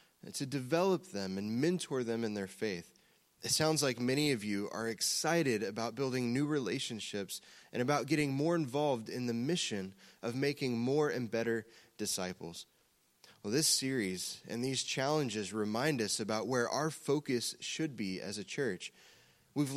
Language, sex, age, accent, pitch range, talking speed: English, male, 20-39, American, 115-155 Hz, 160 wpm